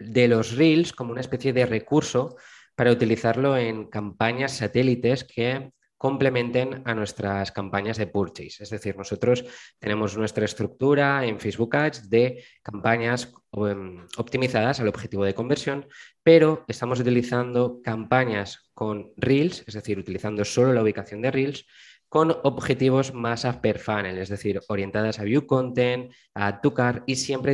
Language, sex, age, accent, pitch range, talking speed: Spanish, male, 20-39, Spanish, 105-130 Hz, 140 wpm